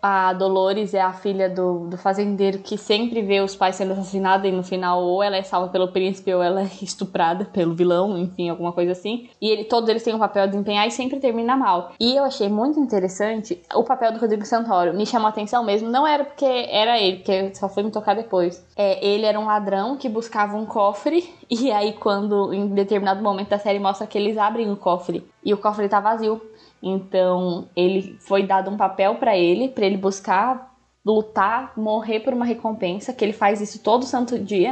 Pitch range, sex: 190-215 Hz, female